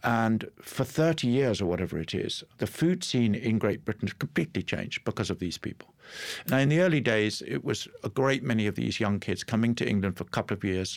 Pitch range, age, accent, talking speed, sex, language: 95-120 Hz, 50-69, British, 235 wpm, male, English